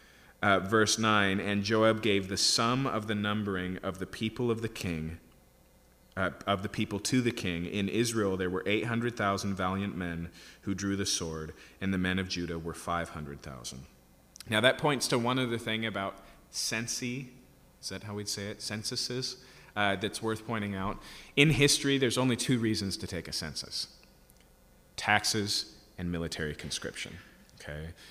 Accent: American